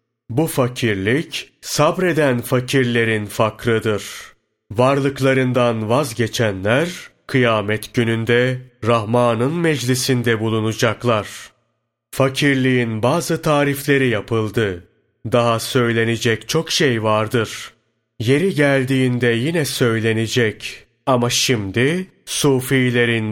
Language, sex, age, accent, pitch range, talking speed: Turkish, male, 30-49, native, 115-135 Hz, 70 wpm